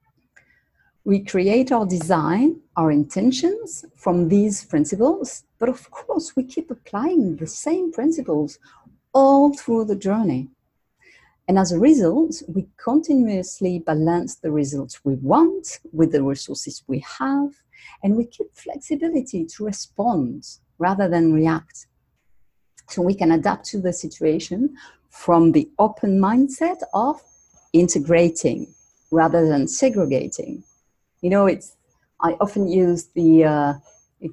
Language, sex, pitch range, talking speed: English, female, 165-255 Hz, 125 wpm